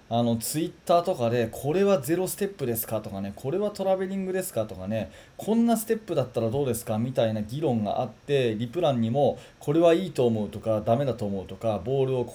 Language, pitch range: Japanese, 115-185 Hz